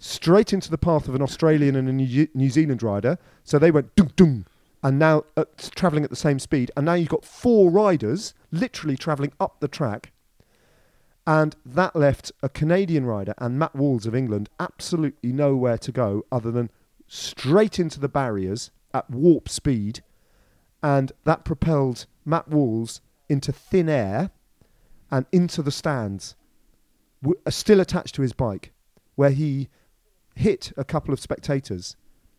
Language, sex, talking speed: English, male, 155 wpm